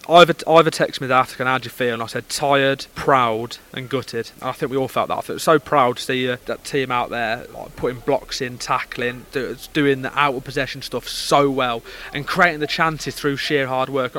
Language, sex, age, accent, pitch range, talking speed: English, male, 20-39, British, 125-150 Hz, 230 wpm